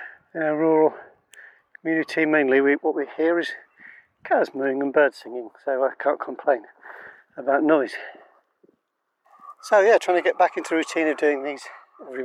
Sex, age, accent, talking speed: male, 40-59, British, 160 wpm